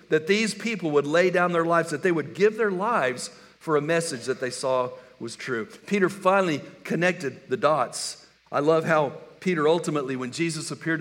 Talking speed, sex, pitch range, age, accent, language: 190 wpm, male, 120-160 Hz, 60-79, American, English